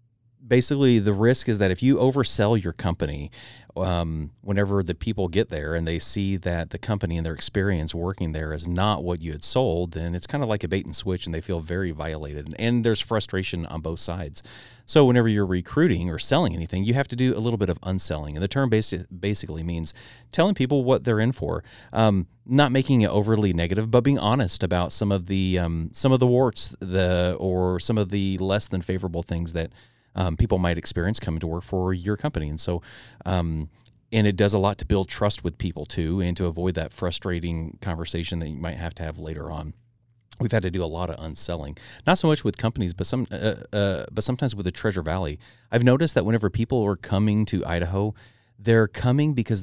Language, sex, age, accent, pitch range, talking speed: English, male, 30-49, American, 85-115 Hz, 220 wpm